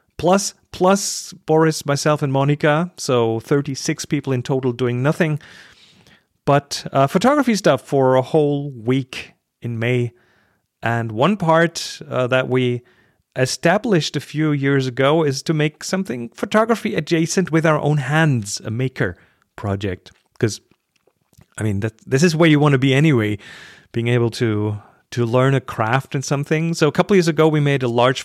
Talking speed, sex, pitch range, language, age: 165 wpm, male, 120-160 Hz, English, 40-59